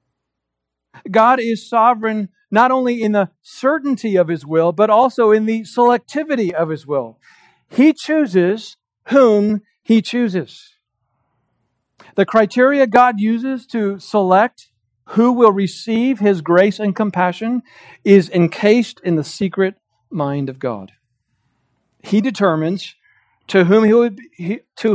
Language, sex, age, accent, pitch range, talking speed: English, male, 40-59, American, 180-230 Hz, 125 wpm